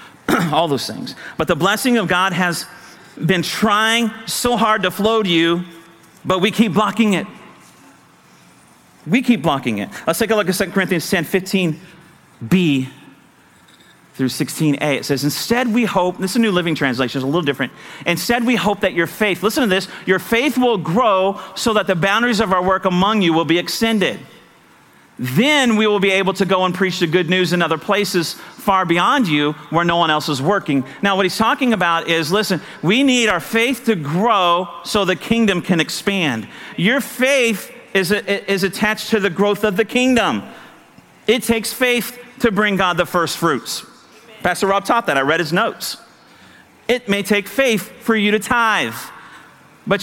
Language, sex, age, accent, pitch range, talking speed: English, male, 40-59, American, 175-225 Hz, 185 wpm